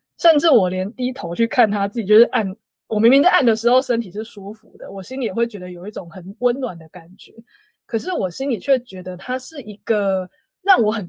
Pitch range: 185-240 Hz